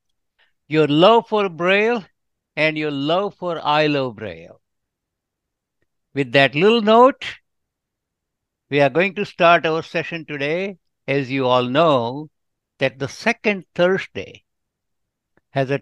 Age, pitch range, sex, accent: 60-79, 135-180 Hz, male, Indian